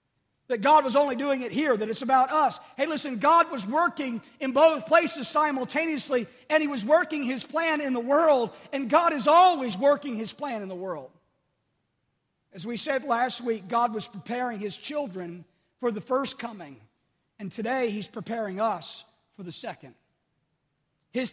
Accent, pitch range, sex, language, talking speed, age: American, 225-285 Hz, male, English, 175 wpm, 40-59